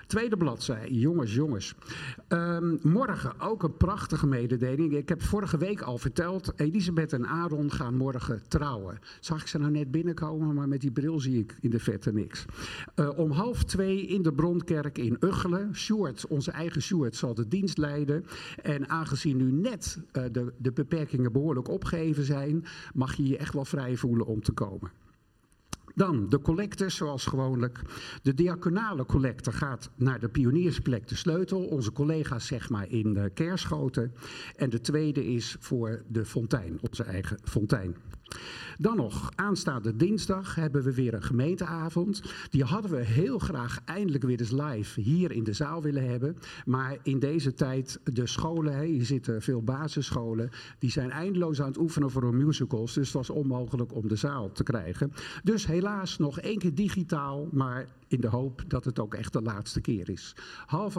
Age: 50-69